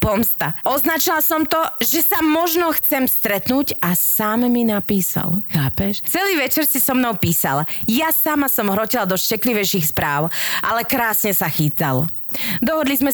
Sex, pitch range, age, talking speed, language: female, 185-260 Hz, 30-49, 150 wpm, Slovak